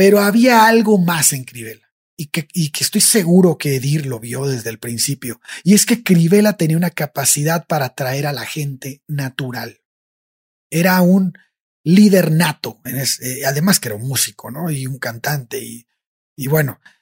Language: Spanish